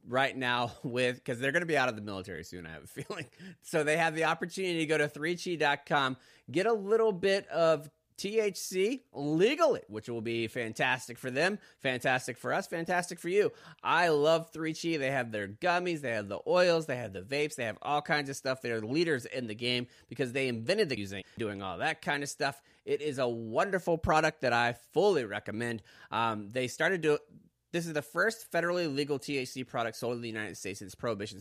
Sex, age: male, 30-49